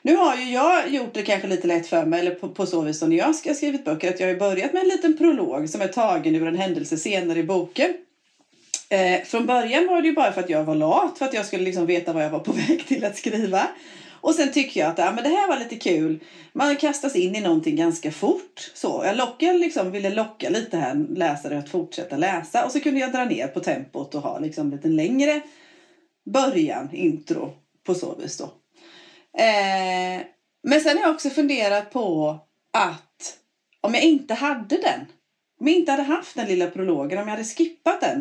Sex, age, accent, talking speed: female, 30-49, native, 225 wpm